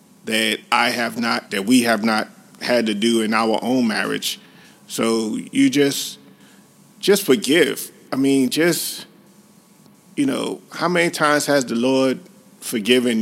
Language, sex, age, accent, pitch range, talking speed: English, male, 40-59, American, 115-185 Hz, 145 wpm